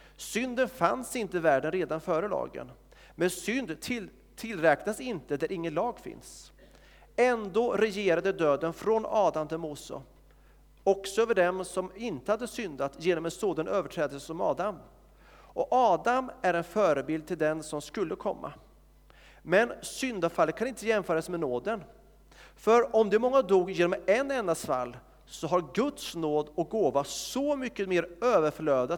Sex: male